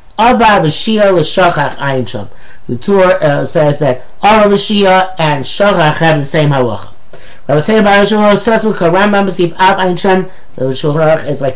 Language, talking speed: English, 110 wpm